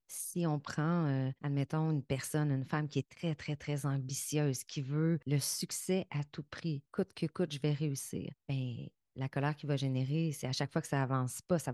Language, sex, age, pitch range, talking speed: French, female, 30-49, 135-165 Hz, 220 wpm